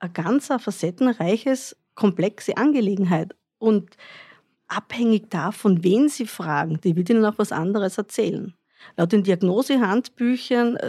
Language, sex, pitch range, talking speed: German, female, 180-225 Hz, 115 wpm